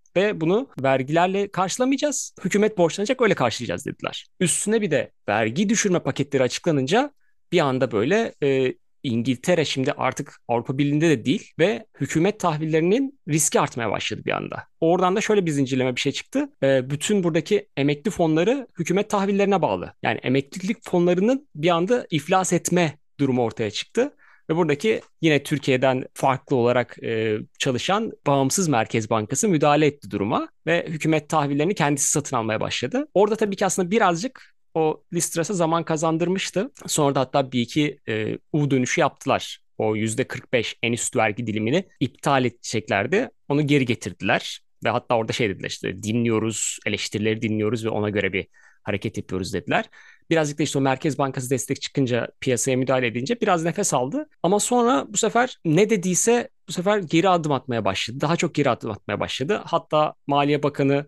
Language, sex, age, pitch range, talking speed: Turkish, male, 30-49, 130-185 Hz, 155 wpm